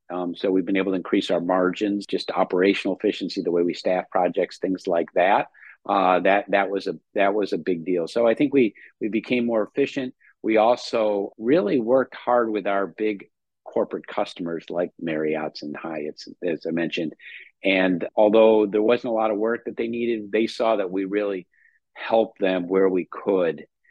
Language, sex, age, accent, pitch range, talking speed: English, male, 50-69, American, 90-105 Hz, 190 wpm